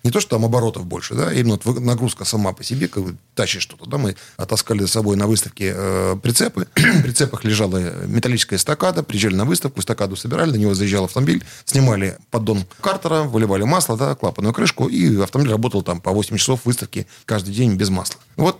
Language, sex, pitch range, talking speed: Russian, male, 100-125 Hz, 195 wpm